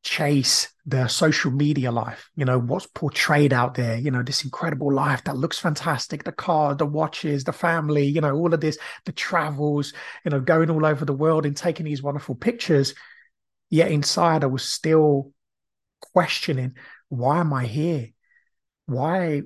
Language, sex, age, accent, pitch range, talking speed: English, male, 30-49, British, 135-165 Hz, 170 wpm